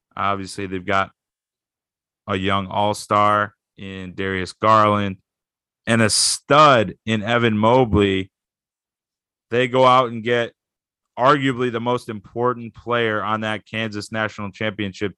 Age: 30-49